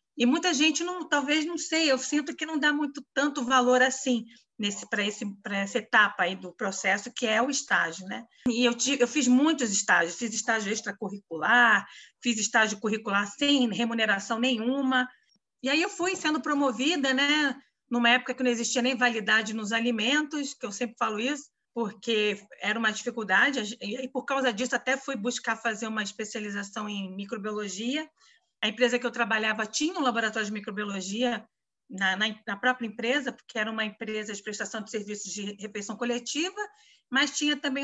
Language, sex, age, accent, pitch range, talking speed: Portuguese, female, 40-59, Brazilian, 215-265 Hz, 180 wpm